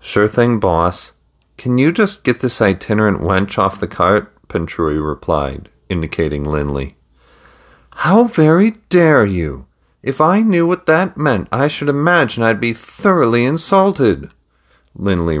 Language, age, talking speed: English, 40-59, 135 wpm